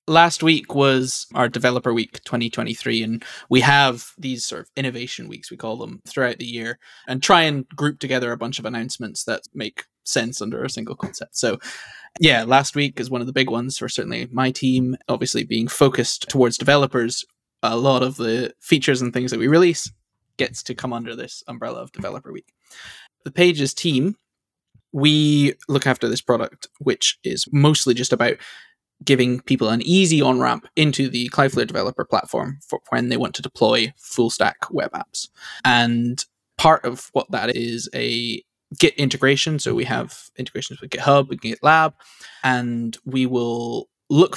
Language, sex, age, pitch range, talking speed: English, male, 20-39, 120-140 Hz, 175 wpm